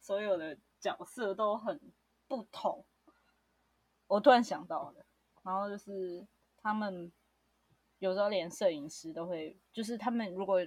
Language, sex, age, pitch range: Chinese, female, 20-39, 180-250 Hz